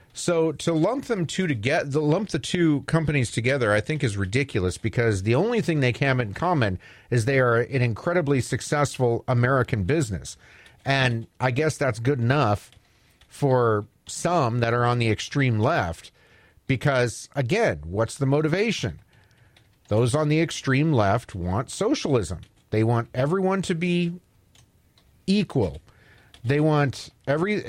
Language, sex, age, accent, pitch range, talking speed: English, male, 40-59, American, 115-155 Hz, 150 wpm